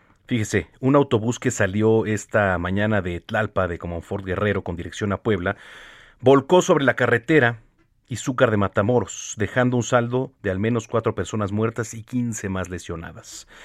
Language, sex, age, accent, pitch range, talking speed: Spanish, male, 40-59, Mexican, 95-125 Hz, 160 wpm